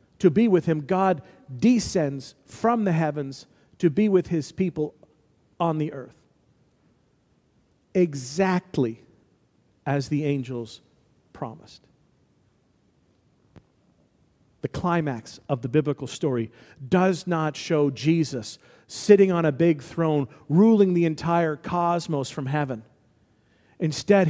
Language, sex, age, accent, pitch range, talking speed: English, male, 40-59, American, 140-185 Hz, 110 wpm